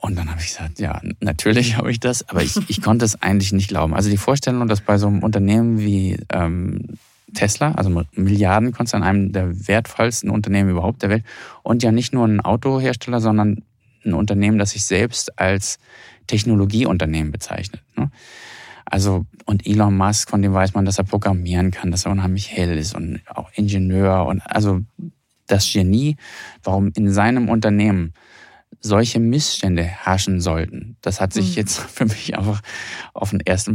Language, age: German, 20-39